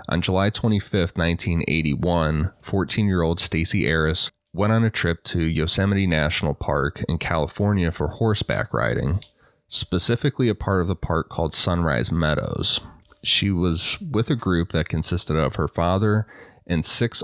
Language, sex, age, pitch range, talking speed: English, male, 30-49, 80-100 Hz, 145 wpm